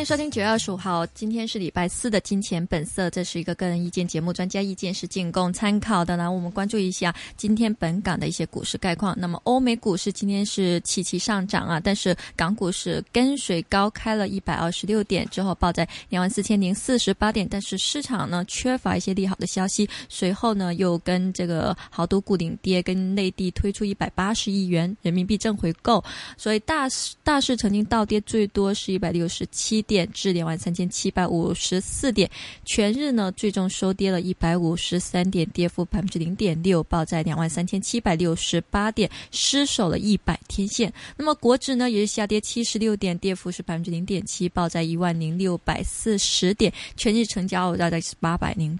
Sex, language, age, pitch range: female, Chinese, 20-39, 175-215 Hz